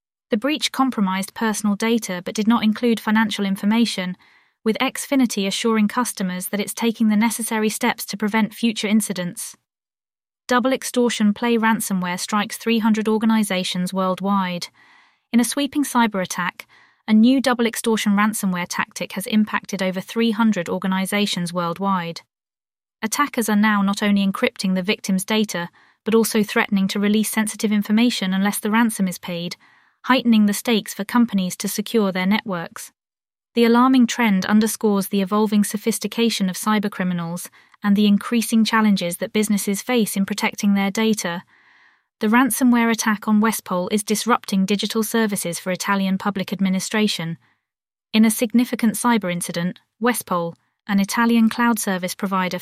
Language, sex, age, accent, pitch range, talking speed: English, female, 20-39, British, 195-230 Hz, 140 wpm